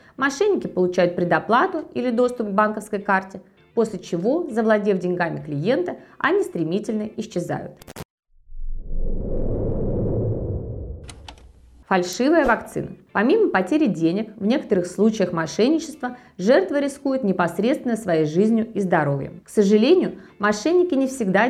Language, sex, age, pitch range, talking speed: Russian, female, 20-39, 175-245 Hz, 105 wpm